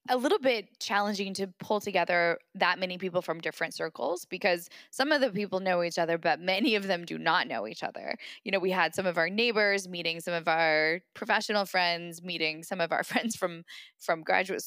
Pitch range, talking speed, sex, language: 165-205 Hz, 215 wpm, female, English